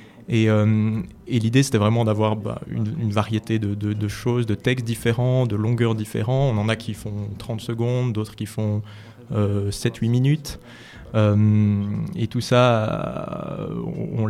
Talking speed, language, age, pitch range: 165 wpm, French, 20-39, 105-125 Hz